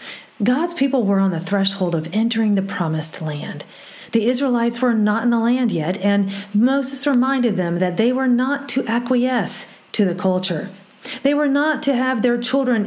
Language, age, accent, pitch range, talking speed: English, 40-59, American, 195-260 Hz, 180 wpm